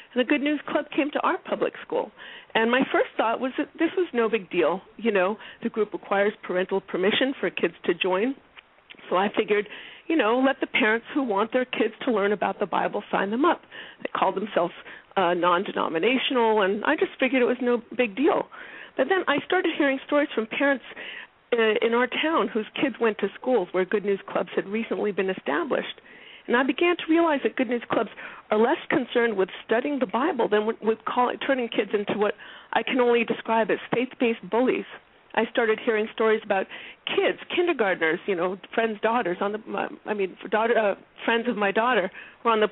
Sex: female